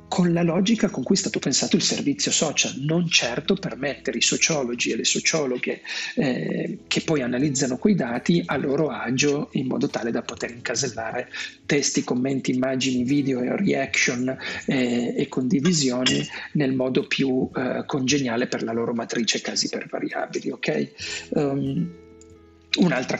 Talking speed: 155 wpm